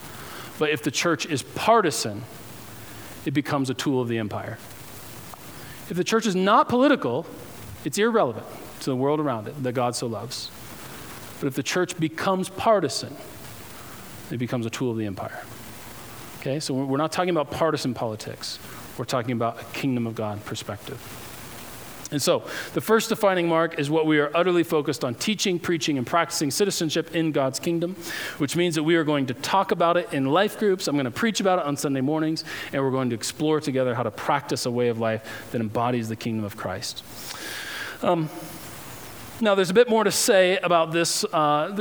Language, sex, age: English, male, 40-59